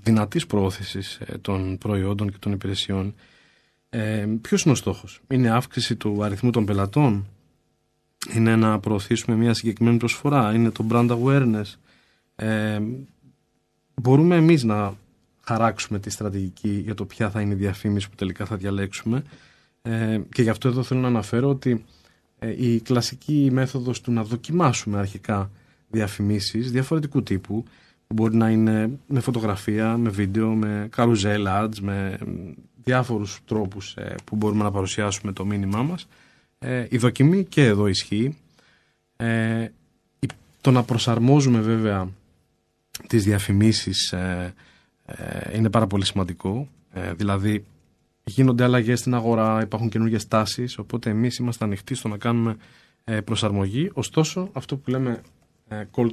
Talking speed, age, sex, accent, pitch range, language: 130 wpm, 20-39, male, native, 105-125 Hz, Greek